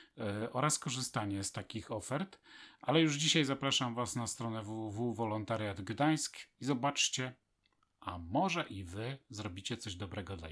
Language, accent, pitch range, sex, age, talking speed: Polish, native, 110-130 Hz, male, 40-59, 130 wpm